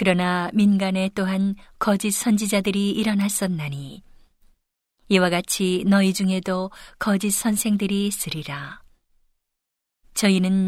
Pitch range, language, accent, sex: 180-200 Hz, Korean, native, female